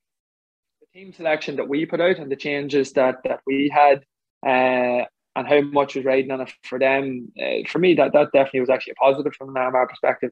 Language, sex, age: English, male, 20-39